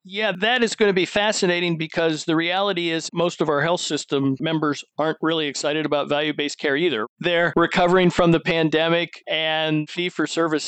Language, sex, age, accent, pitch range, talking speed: English, male, 50-69, American, 145-170 Hz, 175 wpm